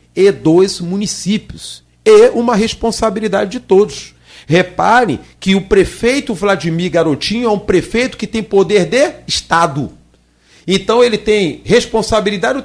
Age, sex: 40-59, male